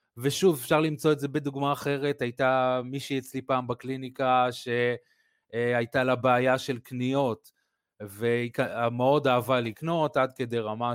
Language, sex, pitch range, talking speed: Hebrew, male, 120-140 Hz, 130 wpm